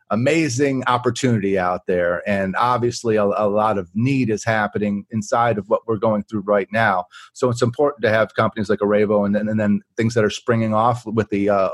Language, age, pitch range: English, 30-49, 110-135 Hz